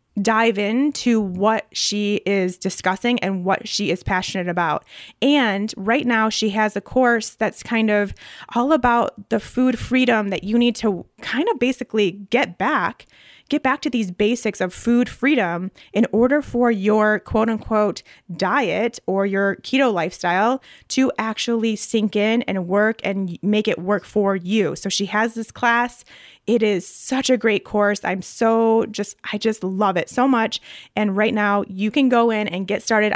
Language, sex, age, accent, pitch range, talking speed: English, female, 20-39, American, 200-235 Hz, 175 wpm